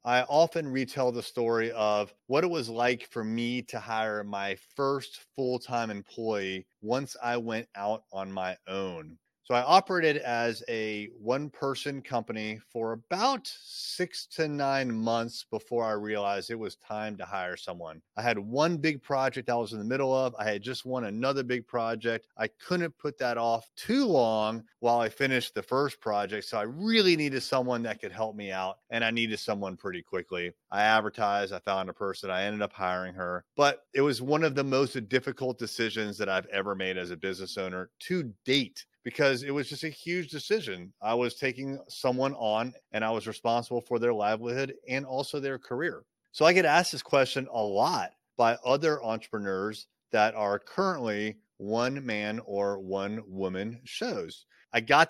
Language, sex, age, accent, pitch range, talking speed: English, male, 30-49, American, 105-135 Hz, 185 wpm